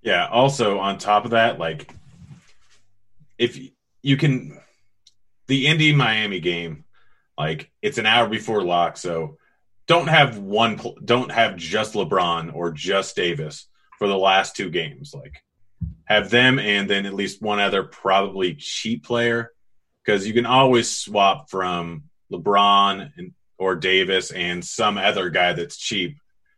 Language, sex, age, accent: English, male, 30-49, American